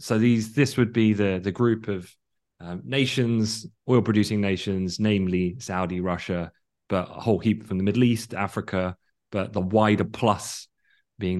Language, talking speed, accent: English, 160 wpm, British